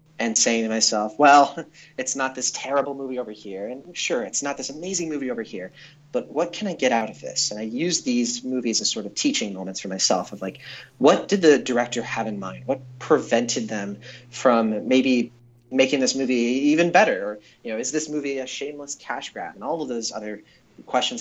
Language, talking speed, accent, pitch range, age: English, 215 wpm, American, 110-145 Hz, 30-49